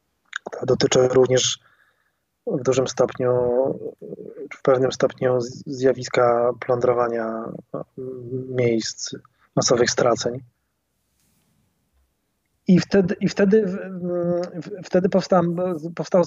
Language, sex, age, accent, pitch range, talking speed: Polish, male, 20-39, native, 120-160 Hz, 75 wpm